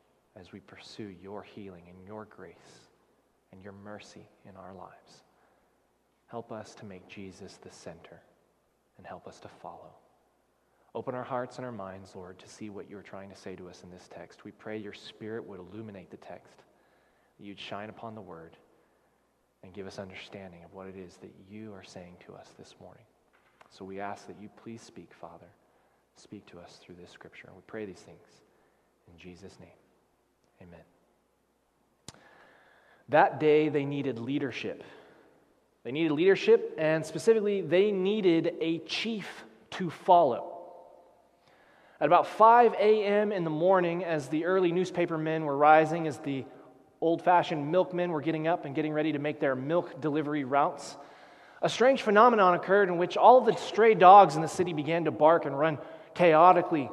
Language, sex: English, male